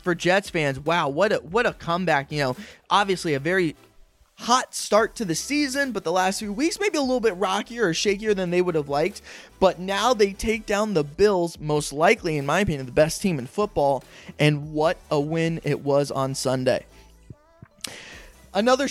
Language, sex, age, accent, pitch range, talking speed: English, male, 20-39, American, 150-195 Hz, 195 wpm